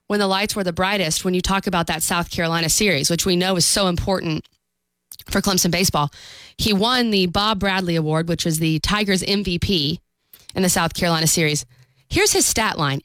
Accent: American